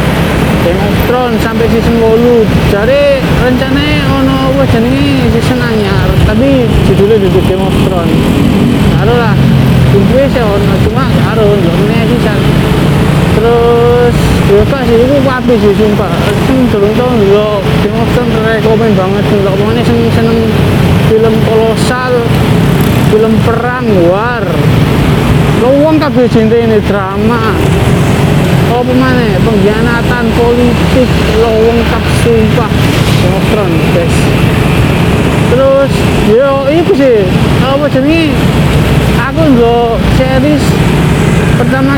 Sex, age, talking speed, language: male, 20-39, 75 wpm, Indonesian